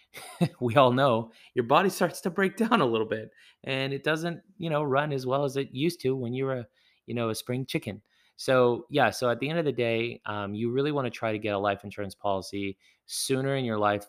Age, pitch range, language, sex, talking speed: 30-49, 100-130 Hz, English, male, 245 wpm